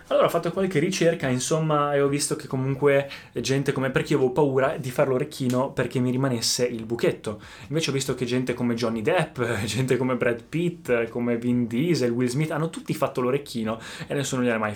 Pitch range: 120-160 Hz